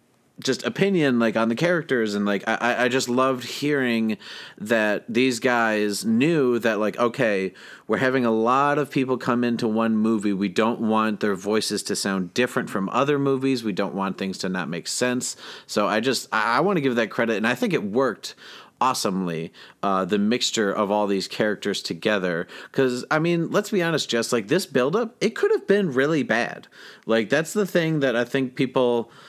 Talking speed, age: 195 wpm, 30-49